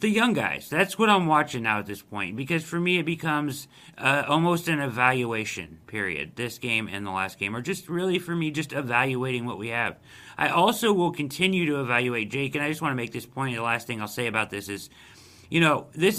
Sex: male